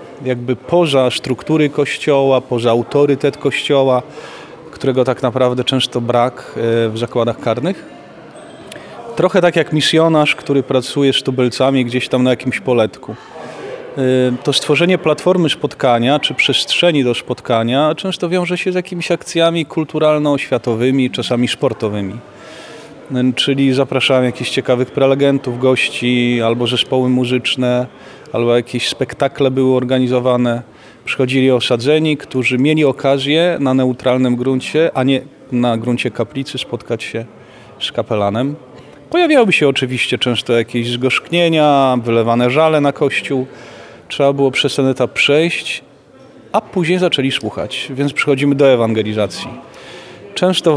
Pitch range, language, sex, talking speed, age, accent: 125-150 Hz, Polish, male, 120 wpm, 30-49, native